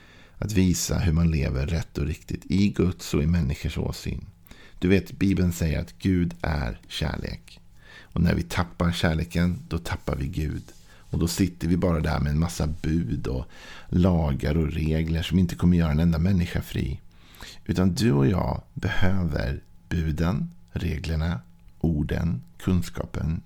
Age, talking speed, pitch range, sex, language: 50-69, 160 wpm, 80-95 Hz, male, Swedish